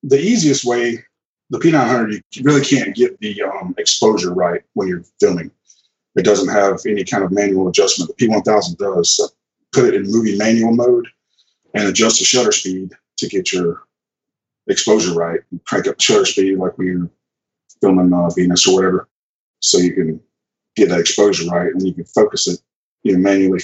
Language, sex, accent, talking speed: English, male, American, 185 wpm